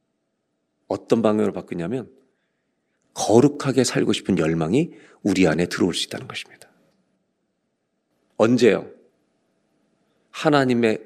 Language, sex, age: Korean, male, 40-59